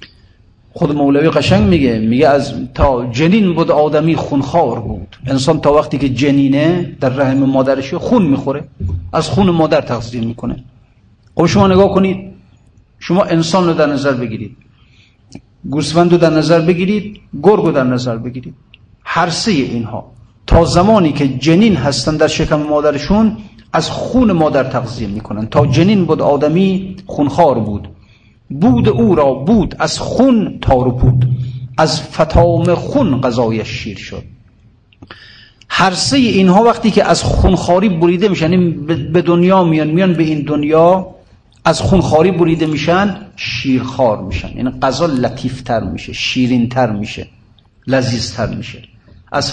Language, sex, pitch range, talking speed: Persian, male, 120-170 Hz, 140 wpm